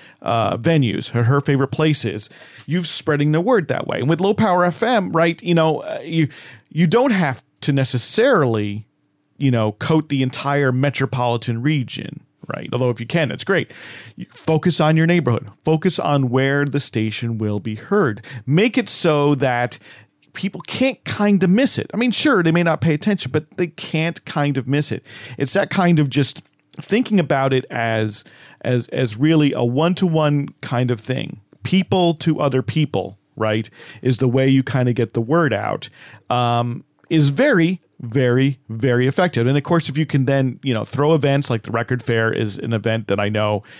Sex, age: male, 40-59